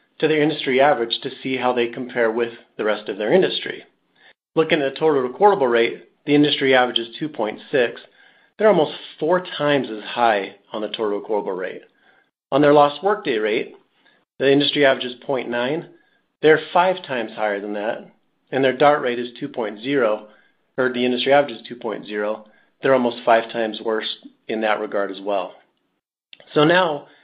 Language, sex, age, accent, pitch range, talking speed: English, male, 40-59, American, 115-145 Hz, 170 wpm